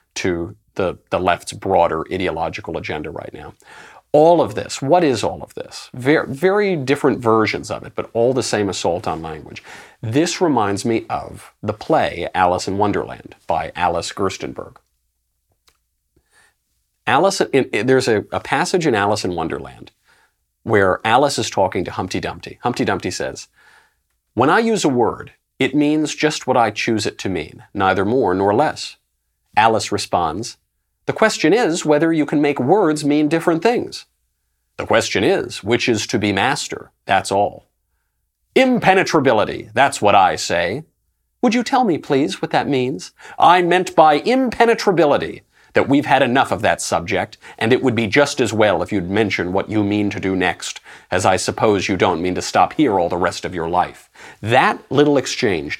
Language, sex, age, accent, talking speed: English, male, 40-59, American, 170 wpm